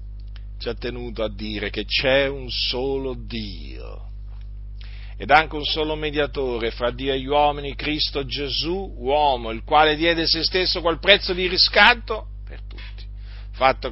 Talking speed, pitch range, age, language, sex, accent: 150 wpm, 100-145 Hz, 50-69, Italian, male, native